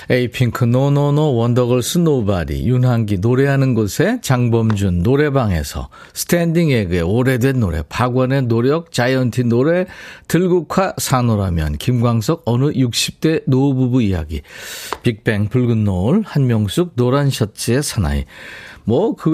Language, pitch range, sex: Korean, 105-140 Hz, male